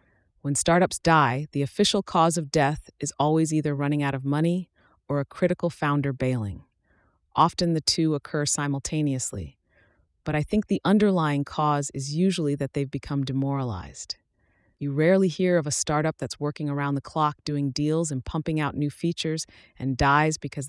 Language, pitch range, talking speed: English, 135-165 Hz, 170 wpm